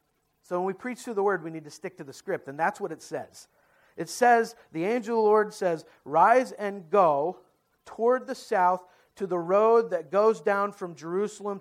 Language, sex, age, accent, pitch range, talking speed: English, male, 50-69, American, 200-275 Hz, 210 wpm